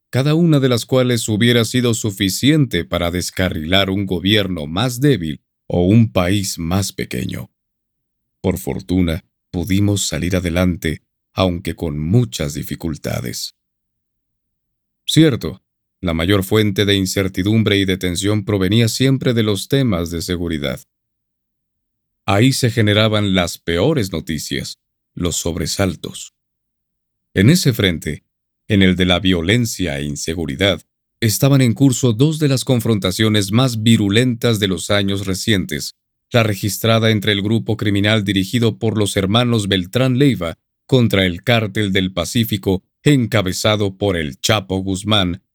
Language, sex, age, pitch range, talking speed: Spanish, male, 50-69, 90-120 Hz, 130 wpm